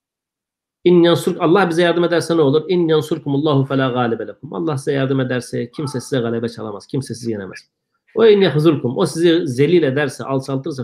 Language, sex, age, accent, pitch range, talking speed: Turkish, male, 40-59, native, 125-165 Hz, 145 wpm